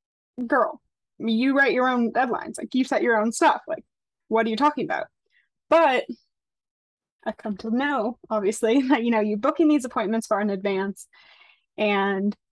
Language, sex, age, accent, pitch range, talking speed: English, female, 20-39, American, 210-270 Hz, 170 wpm